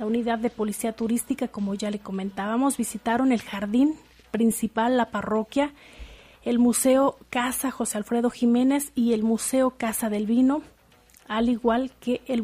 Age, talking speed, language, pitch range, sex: 30-49, 150 wpm, Spanish, 225-265 Hz, female